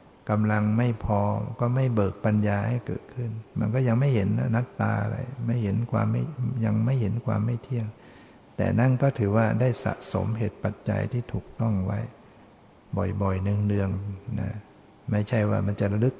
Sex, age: male, 60-79